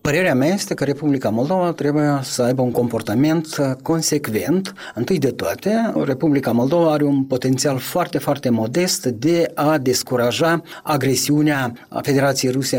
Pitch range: 130-170 Hz